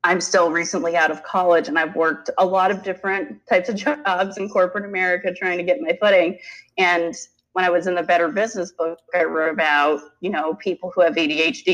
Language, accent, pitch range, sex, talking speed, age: English, American, 150-185 Hz, female, 215 wpm, 30-49